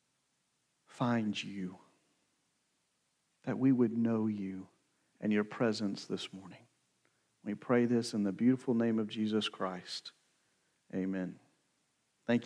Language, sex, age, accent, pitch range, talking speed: English, male, 40-59, American, 135-195 Hz, 115 wpm